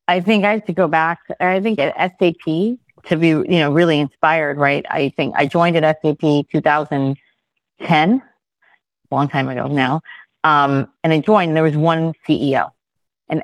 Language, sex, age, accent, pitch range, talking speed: English, female, 40-59, American, 150-185 Hz, 175 wpm